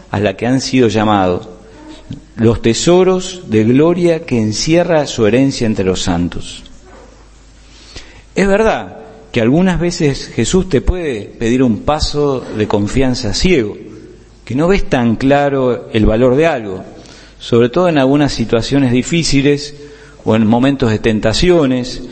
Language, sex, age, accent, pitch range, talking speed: Spanish, male, 40-59, Argentinian, 105-145 Hz, 140 wpm